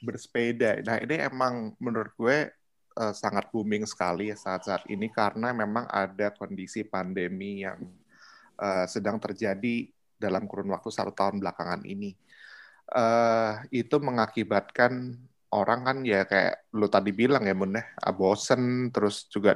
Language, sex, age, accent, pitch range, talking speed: Indonesian, male, 20-39, native, 100-120 Hz, 130 wpm